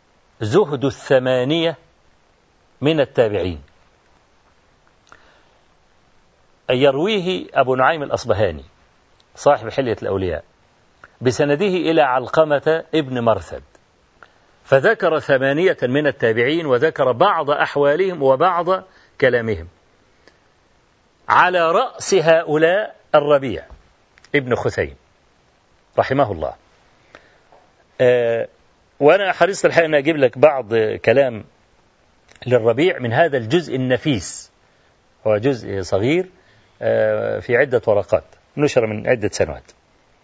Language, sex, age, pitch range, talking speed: Arabic, male, 50-69, 125-175 Hz, 85 wpm